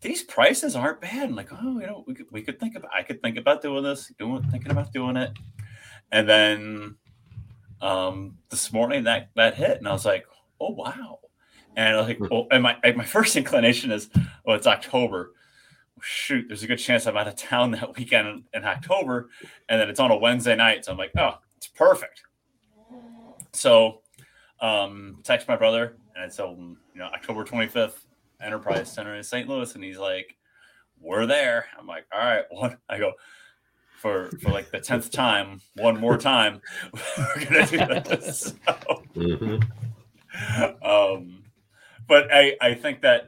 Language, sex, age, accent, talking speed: English, male, 30-49, American, 185 wpm